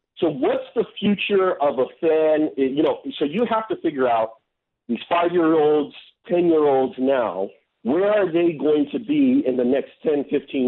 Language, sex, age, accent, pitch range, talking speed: English, male, 50-69, American, 135-205 Hz, 170 wpm